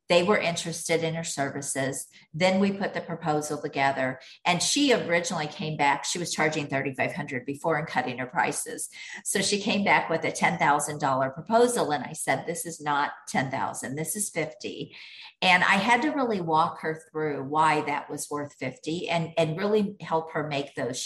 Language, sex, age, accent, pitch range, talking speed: English, female, 50-69, American, 150-180 Hz, 190 wpm